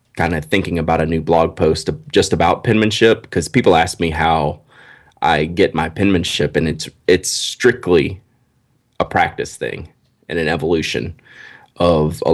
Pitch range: 80-95 Hz